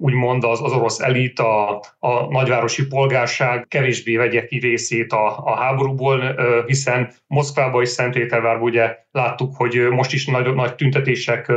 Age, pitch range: 30-49, 115-135 Hz